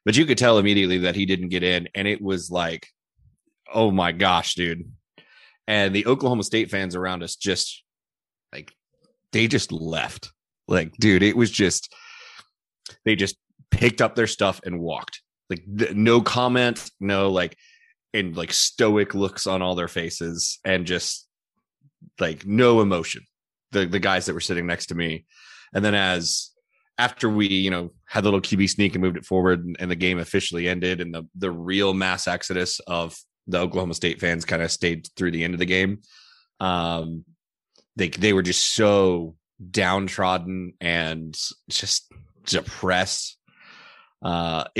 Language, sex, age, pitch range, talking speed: English, male, 30-49, 90-105 Hz, 165 wpm